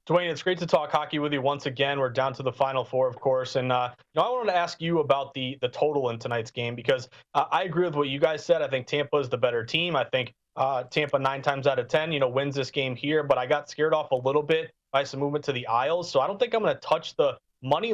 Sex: male